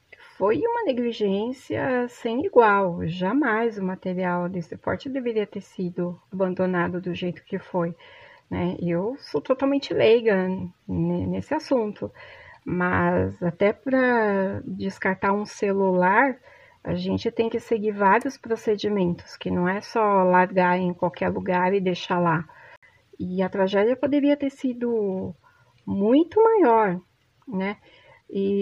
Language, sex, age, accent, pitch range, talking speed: Portuguese, female, 30-49, Brazilian, 180-240 Hz, 125 wpm